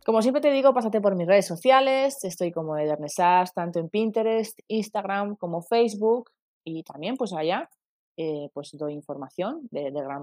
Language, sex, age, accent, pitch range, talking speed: Spanish, female, 20-39, Spanish, 165-220 Hz, 170 wpm